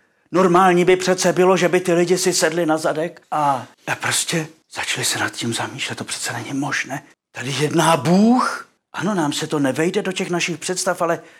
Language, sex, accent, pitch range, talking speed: Czech, male, native, 120-180 Hz, 190 wpm